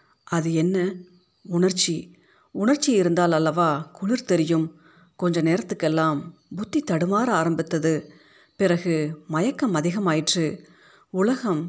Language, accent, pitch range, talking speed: Tamil, native, 165-205 Hz, 85 wpm